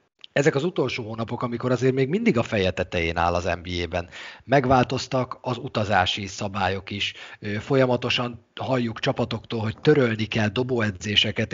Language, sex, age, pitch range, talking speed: Hungarian, male, 30-49, 100-130 Hz, 130 wpm